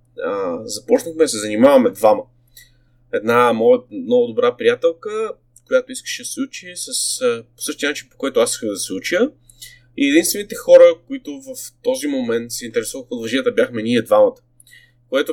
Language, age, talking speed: Bulgarian, 20-39, 165 wpm